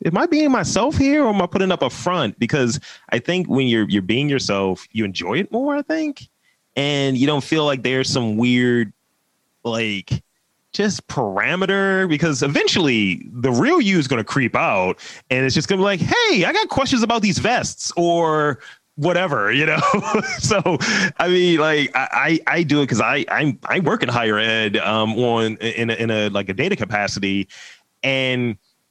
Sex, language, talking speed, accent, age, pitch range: male, English, 190 wpm, American, 30-49, 105-155 Hz